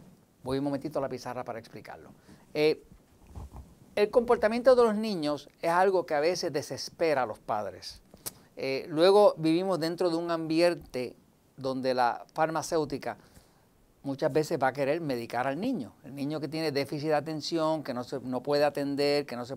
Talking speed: 175 wpm